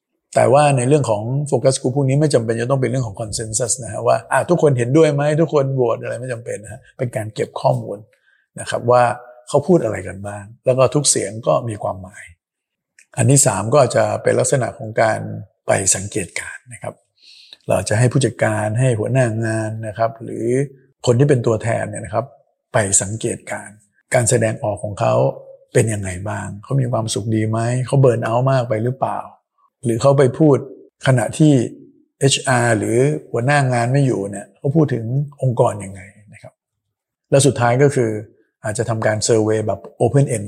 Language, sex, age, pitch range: Thai, male, 60-79, 105-130 Hz